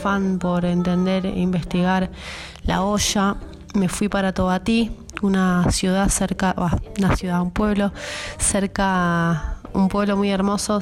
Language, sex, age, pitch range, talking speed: Spanish, female, 20-39, 180-210 Hz, 130 wpm